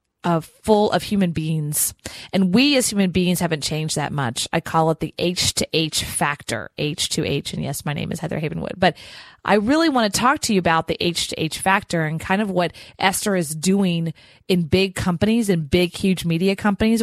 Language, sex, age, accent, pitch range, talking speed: English, female, 30-49, American, 160-200 Hz, 215 wpm